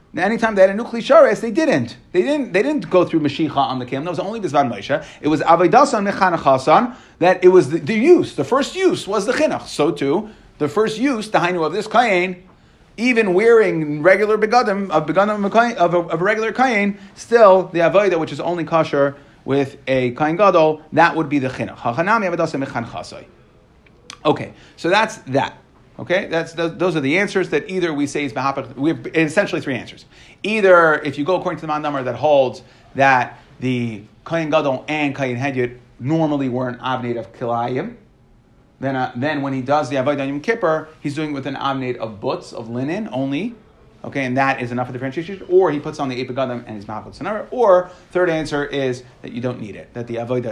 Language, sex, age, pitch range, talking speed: English, male, 30-49, 135-190 Hz, 205 wpm